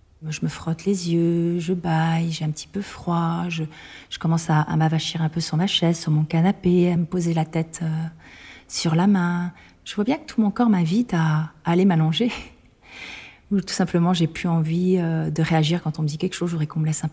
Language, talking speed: French, 235 wpm